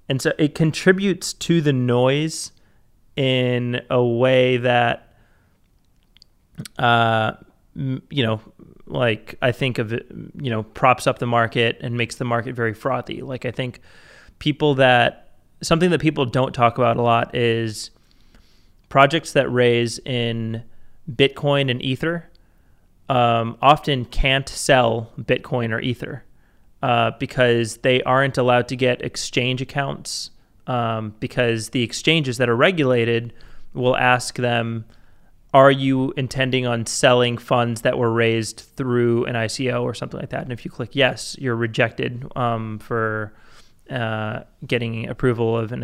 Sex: male